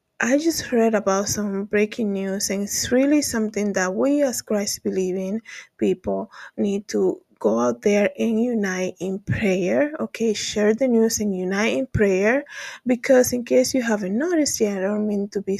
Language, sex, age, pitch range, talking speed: English, female, 20-39, 190-240 Hz, 175 wpm